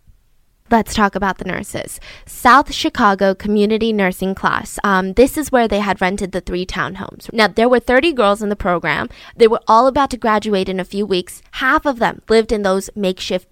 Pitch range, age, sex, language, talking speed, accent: 205-295 Hz, 10-29, female, English, 200 wpm, American